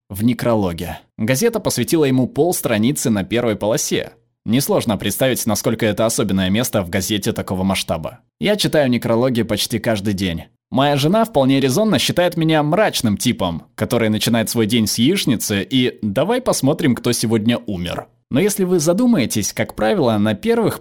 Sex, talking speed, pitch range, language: male, 155 wpm, 110-145 Hz, Russian